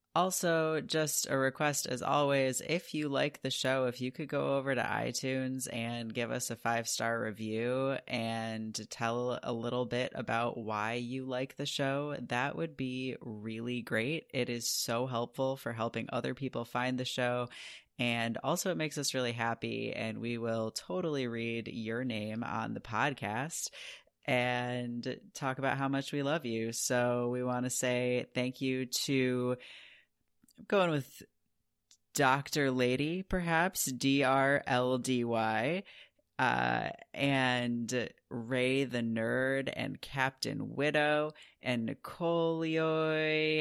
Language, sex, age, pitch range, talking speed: English, female, 30-49, 120-140 Hz, 140 wpm